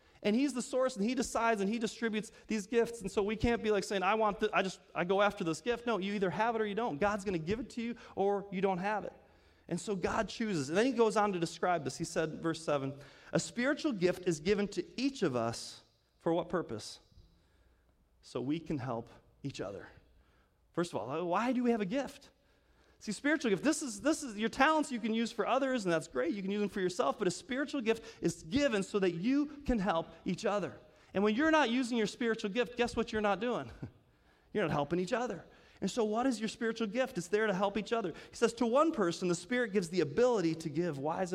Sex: male